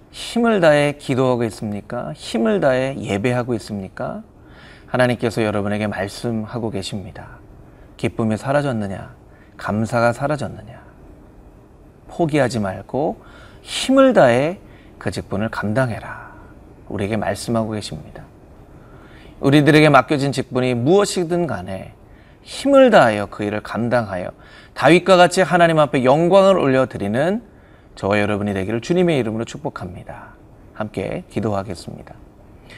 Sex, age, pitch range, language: male, 30-49, 105-155 Hz, Korean